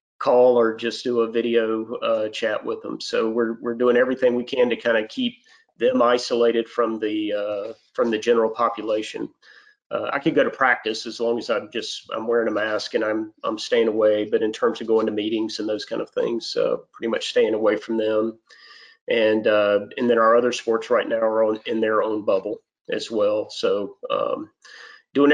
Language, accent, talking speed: English, American, 210 wpm